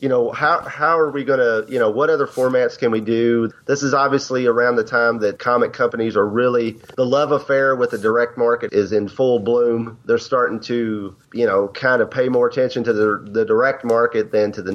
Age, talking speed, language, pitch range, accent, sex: 30-49, 225 wpm, English, 110-140 Hz, American, male